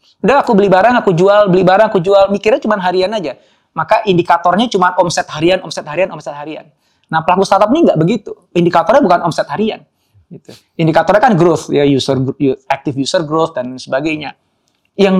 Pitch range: 155-200 Hz